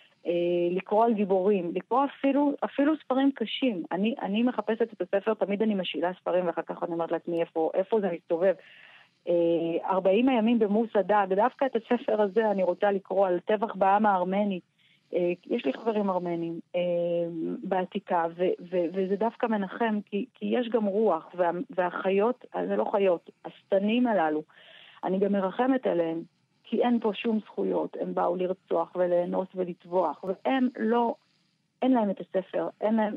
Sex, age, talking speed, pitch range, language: female, 30-49, 150 wpm, 170-215 Hz, Hebrew